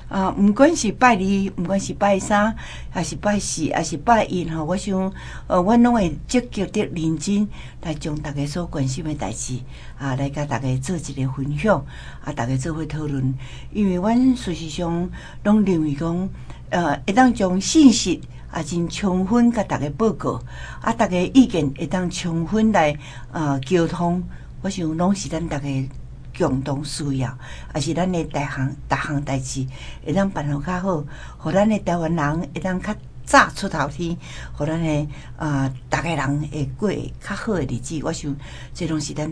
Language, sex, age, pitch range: Chinese, female, 60-79, 140-180 Hz